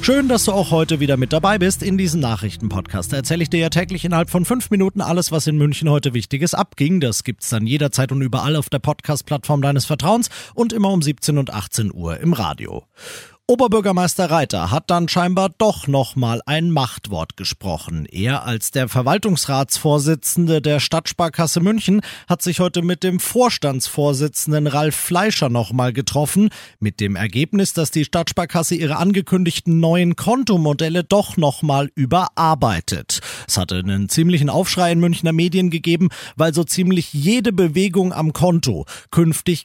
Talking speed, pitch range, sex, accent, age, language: 165 wpm, 130-175 Hz, male, German, 40-59, German